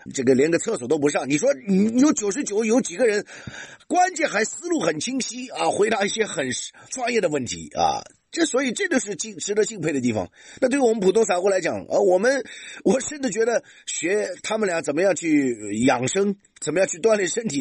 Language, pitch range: Chinese, 145-225 Hz